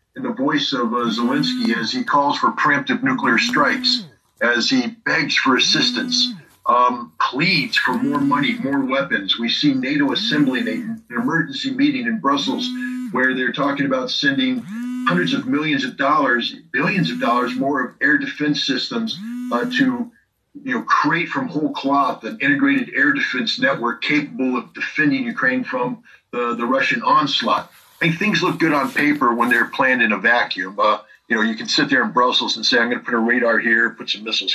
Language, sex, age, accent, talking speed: English, male, 50-69, American, 190 wpm